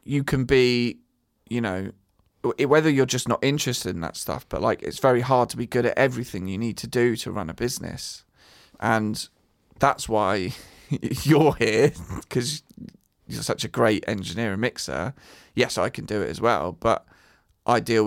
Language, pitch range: English, 105-125 Hz